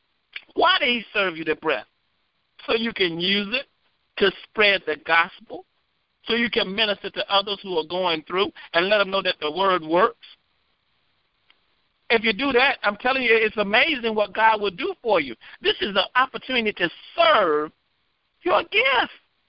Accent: American